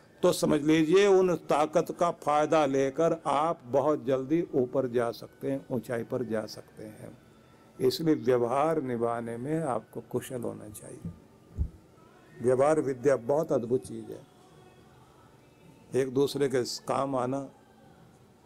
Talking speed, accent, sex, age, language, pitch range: 125 wpm, native, male, 50-69, Hindi, 130-175 Hz